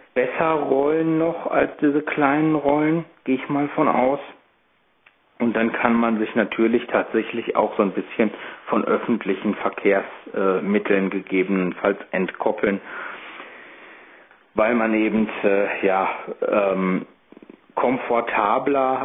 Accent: German